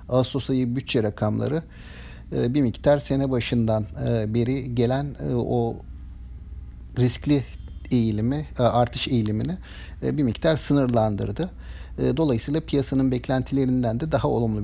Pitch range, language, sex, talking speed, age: 110-135 Hz, Turkish, male, 100 wpm, 50-69